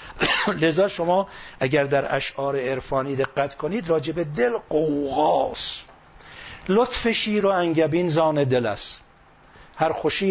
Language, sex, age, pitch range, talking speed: Persian, male, 50-69, 130-170 Hz, 115 wpm